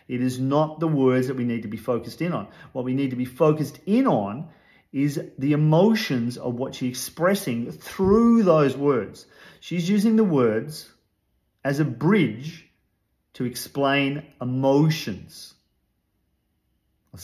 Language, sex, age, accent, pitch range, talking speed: English, male, 40-59, Australian, 120-160 Hz, 145 wpm